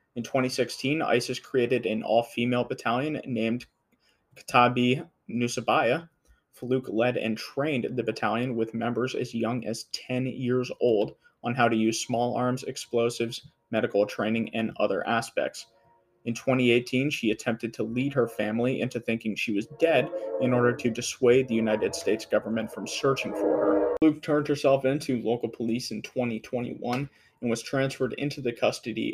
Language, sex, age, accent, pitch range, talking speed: English, male, 20-39, American, 115-130 Hz, 155 wpm